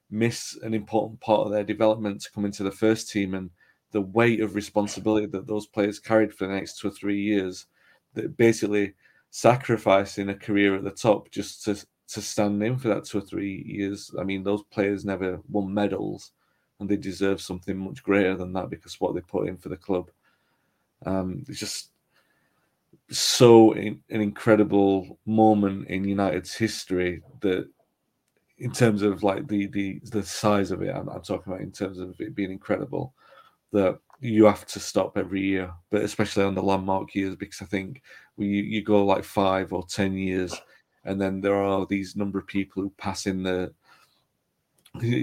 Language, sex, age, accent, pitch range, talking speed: English, male, 30-49, British, 95-105 Hz, 185 wpm